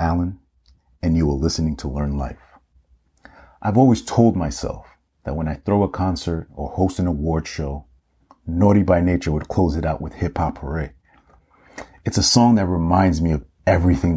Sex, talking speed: male, 180 wpm